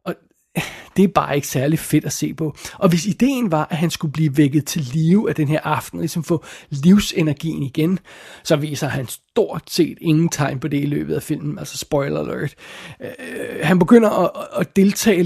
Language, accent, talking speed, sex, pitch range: Danish, native, 190 wpm, male, 155-195 Hz